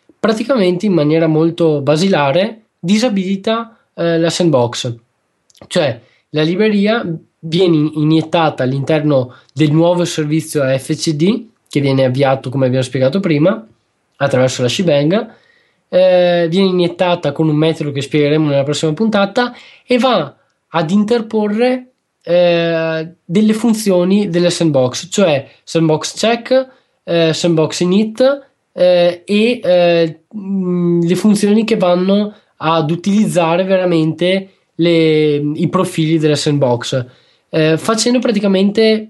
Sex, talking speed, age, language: male, 110 wpm, 20-39, Italian